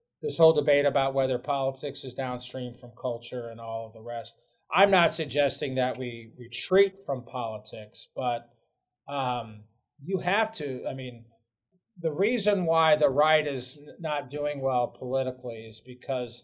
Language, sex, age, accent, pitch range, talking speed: English, male, 40-59, American, 120-155 Hz, 155 wpm